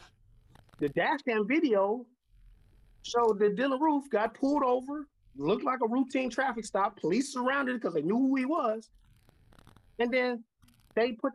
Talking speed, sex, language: 160 wpm, male, English